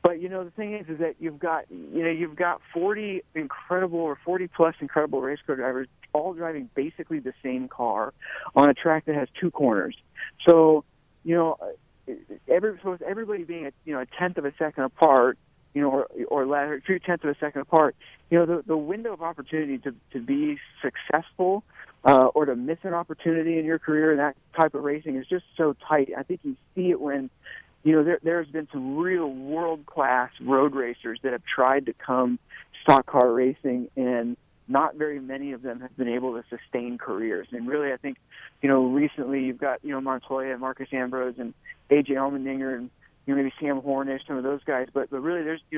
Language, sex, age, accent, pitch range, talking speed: English, male, 50-69, American, 130-165 Hz, 210 wpm